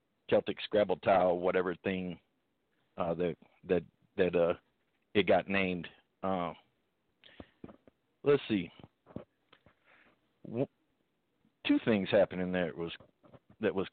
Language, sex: English, male